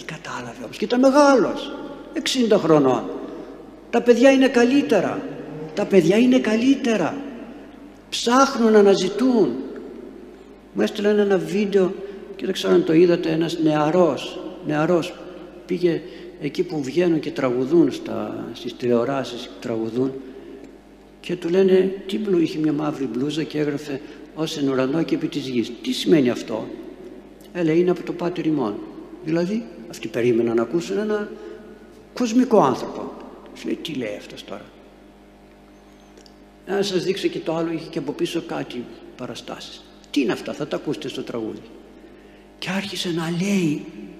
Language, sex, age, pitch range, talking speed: Greek, male, 60-79, 150-215 Hz, 140 wpm